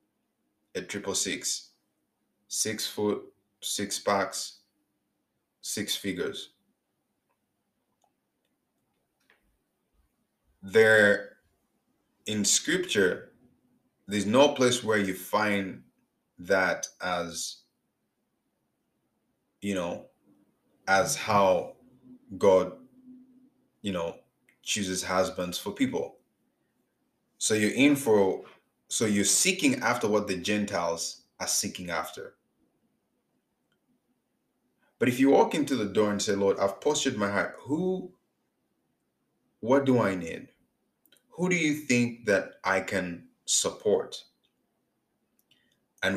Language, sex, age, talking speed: English, male, 30-49, 95 wpm